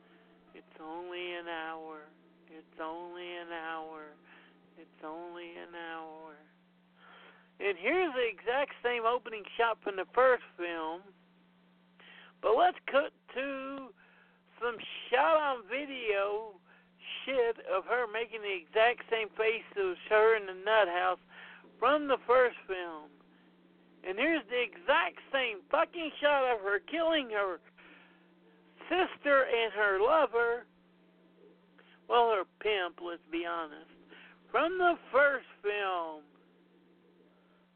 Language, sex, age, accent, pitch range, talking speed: English, male, 60-79, American, 170-280 Hz, 120 wpm